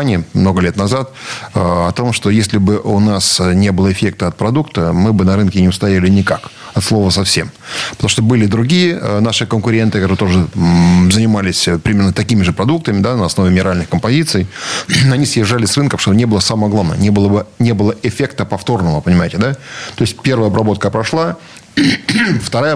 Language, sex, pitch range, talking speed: Russian, male, 95-120 Hz, 165 wpm